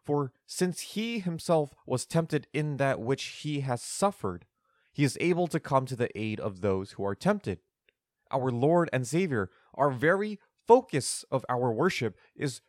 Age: 20-39